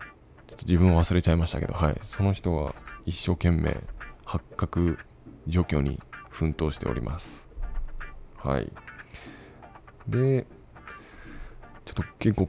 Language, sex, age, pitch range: Japanese, male, 20-39, 85-110 Hz